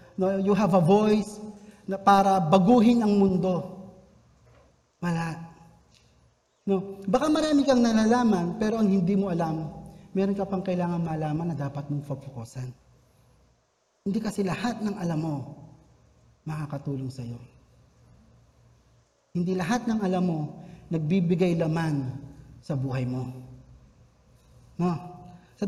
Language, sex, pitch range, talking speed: Filipino, male, 150-205 Hz, 115 wpm